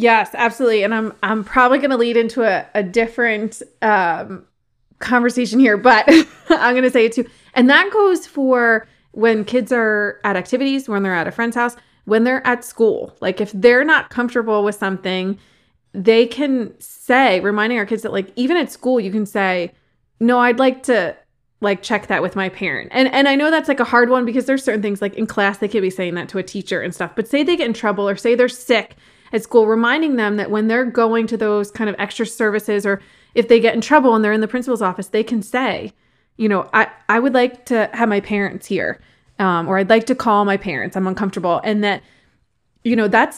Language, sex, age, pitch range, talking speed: English, female, 20-39, 200-245 Hz, 225 wpm